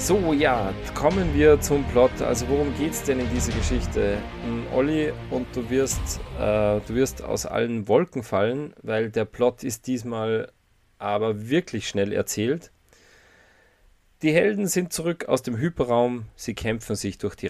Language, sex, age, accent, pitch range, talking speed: German, male, 40-59, German, 105-140 Hz, 160 wpm